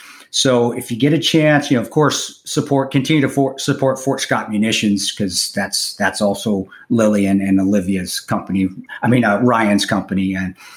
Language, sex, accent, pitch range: English, male, American, 105-130 Hz